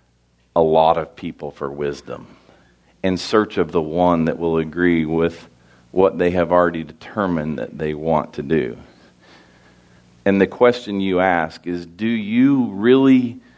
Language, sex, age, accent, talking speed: English, male, 40-59, American, 150 wpm